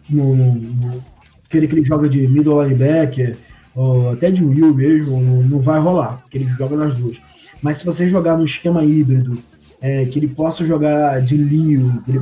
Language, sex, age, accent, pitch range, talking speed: Portuguese, male, 20-39, Brazilian, 135-160 Hz, 195 wpm